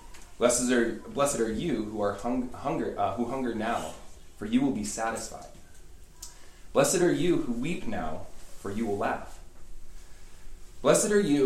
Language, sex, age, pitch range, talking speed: English, male, 20-39, 95-125 Hz, 140 wpm